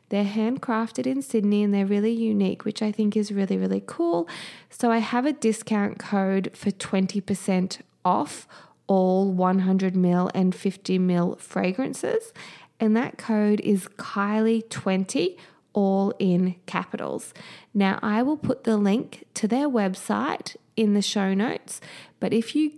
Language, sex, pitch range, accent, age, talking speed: English, female, 185-225 Hz, Australian, 20-39, 140 wpm